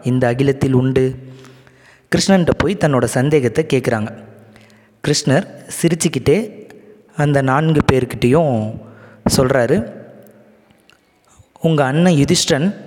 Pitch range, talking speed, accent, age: 120-170 Hz, 80 wpm, native, 20-39